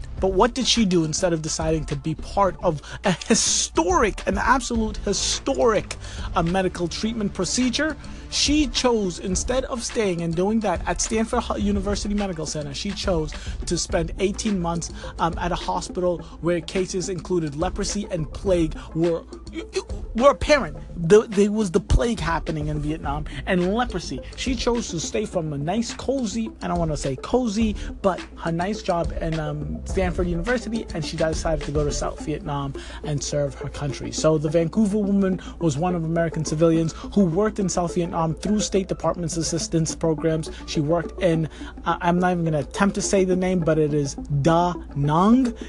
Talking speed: 180 wpm